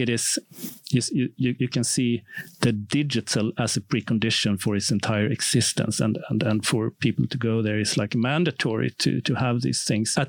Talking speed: 190 wpm